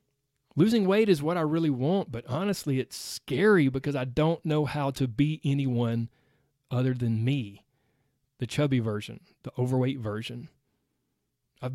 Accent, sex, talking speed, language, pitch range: American, male, 150 wpm, English, 130-160 Hz